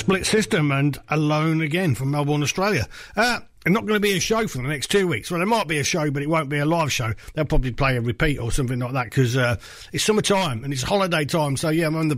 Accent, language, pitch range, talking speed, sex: British, English, 125-175 Hz, 275 wpm, male